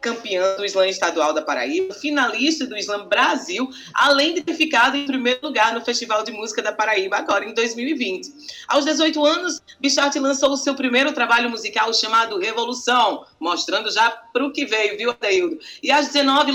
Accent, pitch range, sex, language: Brazilian, 215-290 Hz, female, Portuguese